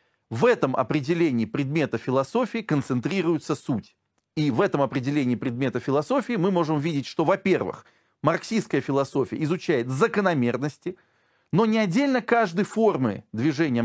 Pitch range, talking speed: 140-210 Hz, 120 wpm